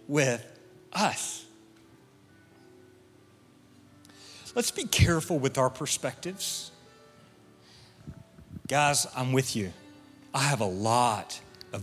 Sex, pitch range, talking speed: male, 105-135 Hz, 85 wpm